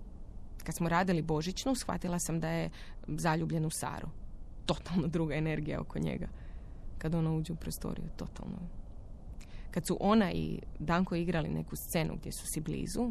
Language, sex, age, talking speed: Croatian, female, 20-39, 155 wpm